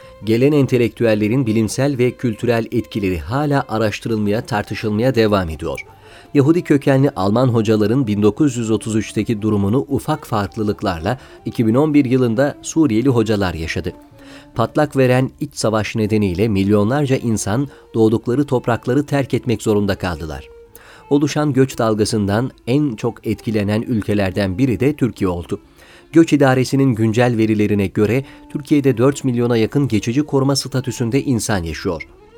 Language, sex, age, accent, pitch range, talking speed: Turkish, male, 40-59, native, 105-135 Hz, 115 wpm